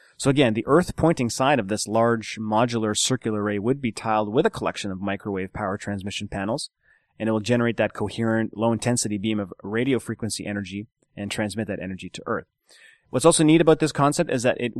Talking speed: 200 wpm